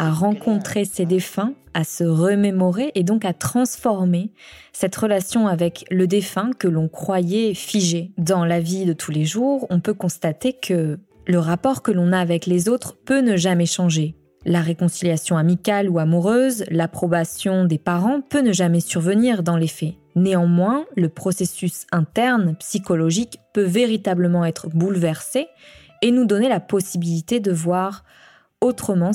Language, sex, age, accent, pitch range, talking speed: French, female, 20-39, French, 170-205 Hz, 155 wpm